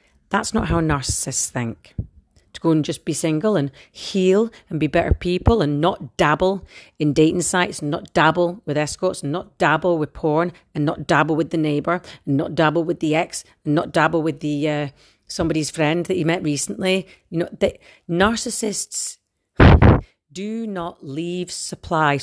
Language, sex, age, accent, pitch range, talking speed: English, female, 40-59, British, 145-180 Hz, 175 wpm